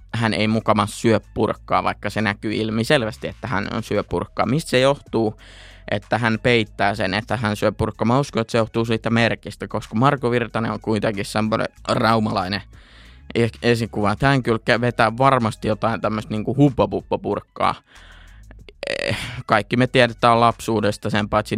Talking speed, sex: 145 wpm, male